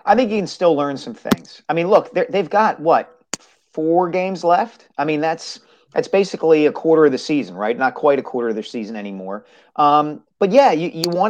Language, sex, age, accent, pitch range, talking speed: English, male, 40-59, American, 135-175 Hz, 225 wpm